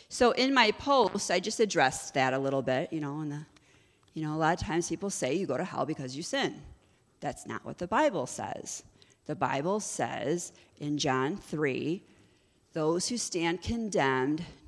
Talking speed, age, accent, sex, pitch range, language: 185 wpm, 40-59, American, female, 155-220 Hz, English